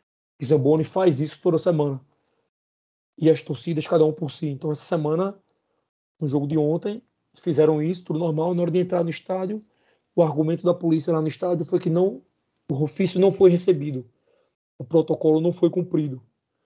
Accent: Brazilian